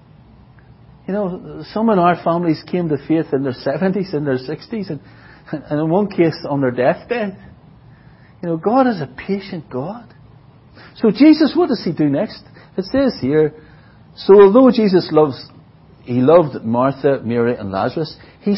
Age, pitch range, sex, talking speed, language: 60-79, 145-225 Hz, male, 165 wpm, English